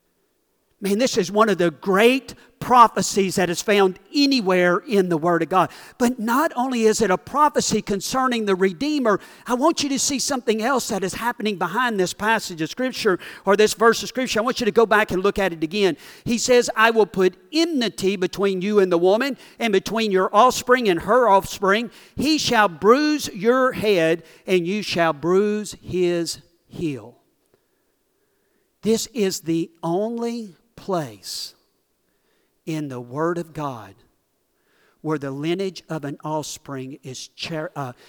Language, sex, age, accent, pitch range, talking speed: English, male, 50-69, American, 155-225 Hz, 165 wpm